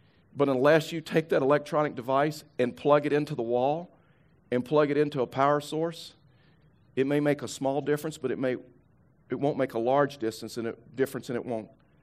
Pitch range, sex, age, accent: 125-150 Hz, male, 50-69, American